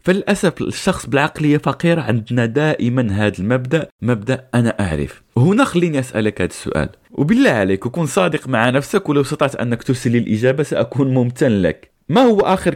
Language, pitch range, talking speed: Arabic, 105-145 Hz, 155 wpm